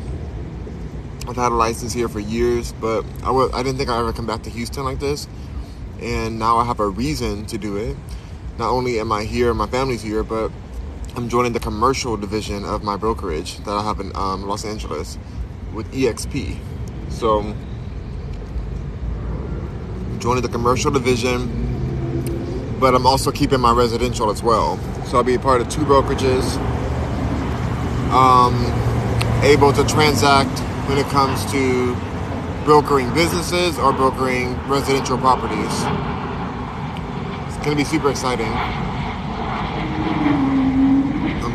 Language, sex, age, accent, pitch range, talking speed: English, male, 20-39, American, 105-130 Hz, 140 wpm